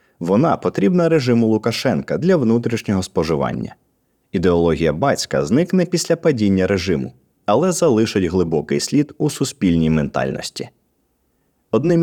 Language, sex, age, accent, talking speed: Ukrainian, male, 30-49, native, 105 wpm